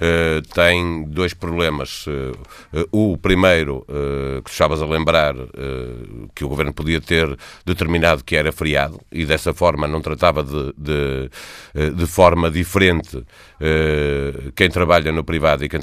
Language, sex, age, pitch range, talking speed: Portuguese, male, 50-69, 75-85 Hz, 155 wpm